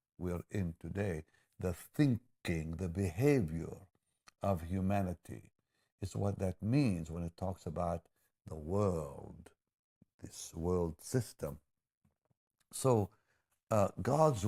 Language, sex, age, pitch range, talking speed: English, male, 60-79, 90-120 Hz, 110 wpm